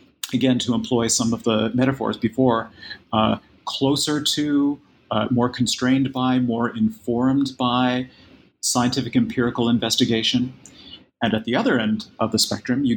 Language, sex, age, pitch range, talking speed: English, male, 40-59, 115-130 Hz, 140 wpm